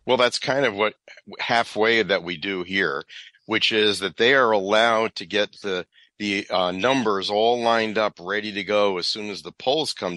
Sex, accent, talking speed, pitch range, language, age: male, American, 200 wpm, 95-115 Hz, English, 50-69